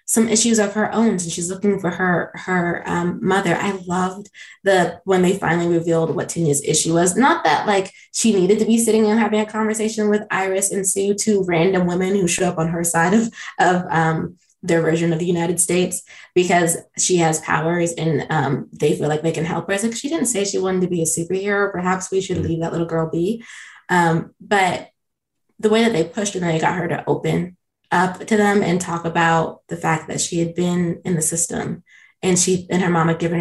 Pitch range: 170-200 Hz